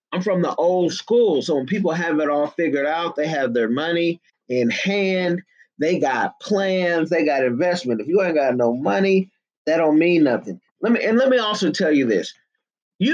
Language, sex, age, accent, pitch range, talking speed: English, male, 30-49, American, 150-200 Hz, 205 wpm